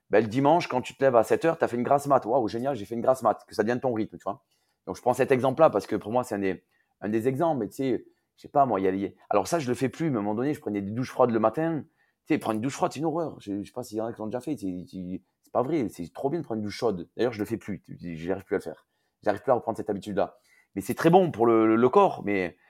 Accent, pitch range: French, 105-140 Hz